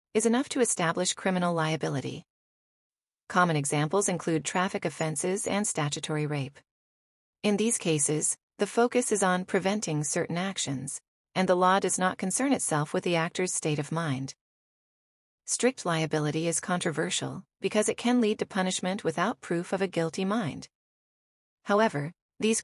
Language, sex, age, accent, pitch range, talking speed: English, female, 30-49, American, 160-205 Hz, 145 wpm